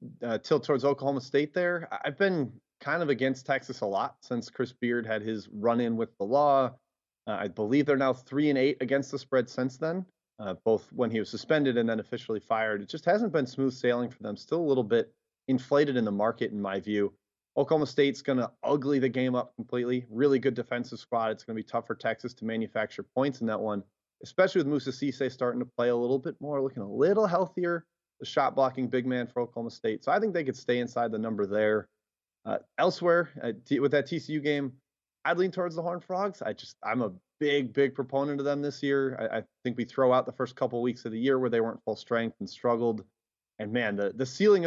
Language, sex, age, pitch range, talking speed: English, male, 30-49, 115-140 Hz, 230 wpm